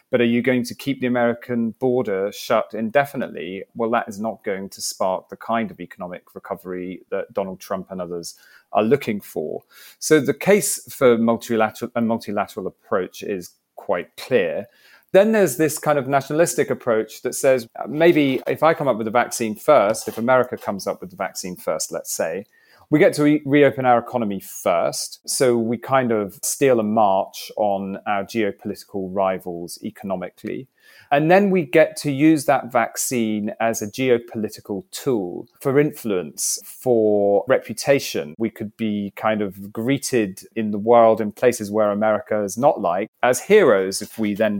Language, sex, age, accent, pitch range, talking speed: English, male, 30-49, British, 105-135 Hz, 170 wpm